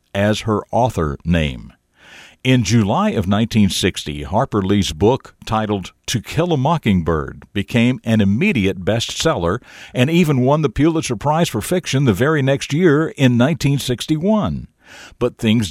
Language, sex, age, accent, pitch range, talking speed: English, male, 60-79, American, 90-125 Hz, 140 wpm